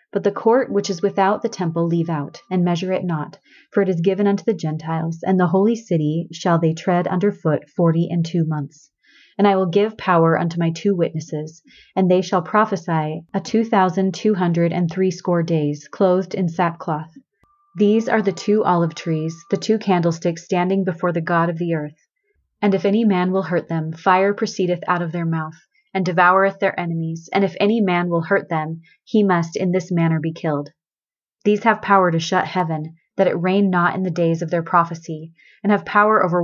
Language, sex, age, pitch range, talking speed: English, female, 30-49, 165-195 Hz, 205 wpm